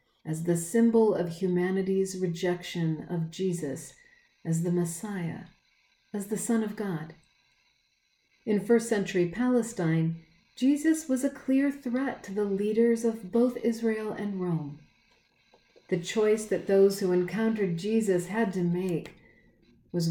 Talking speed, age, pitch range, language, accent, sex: 130 wpm, 50-69, 170-225 Hz, English, American, female